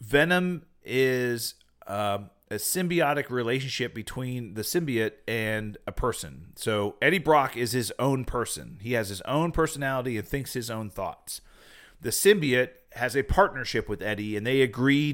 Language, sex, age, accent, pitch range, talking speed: English, male, 40-59, American, 110-135 Hz, 155 wpm